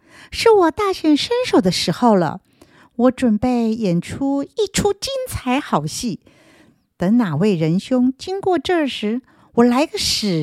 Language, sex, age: Chinese, female, 50-69